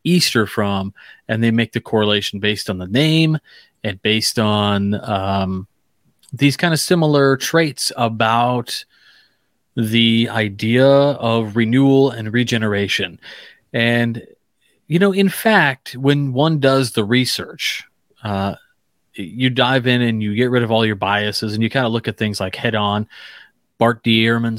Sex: male